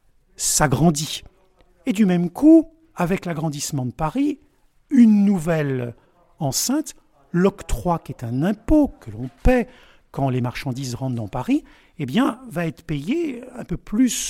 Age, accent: 50-69, French